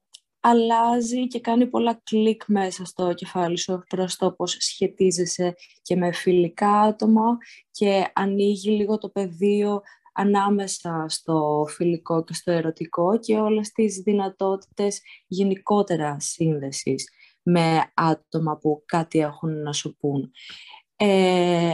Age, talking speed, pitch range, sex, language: 20-39, 115 wpm, 165-205 Hz, female, Greek